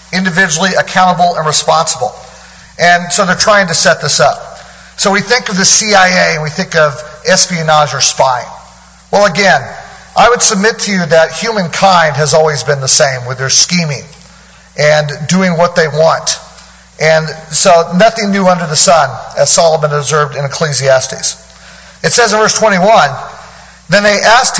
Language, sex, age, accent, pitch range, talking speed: English, male, 40-59, American, 160-205 Hz, 165 wpm